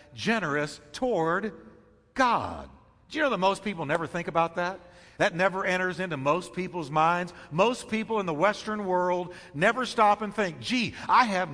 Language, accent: English, American